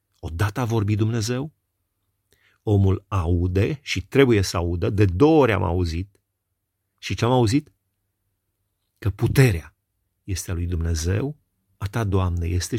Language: Romanian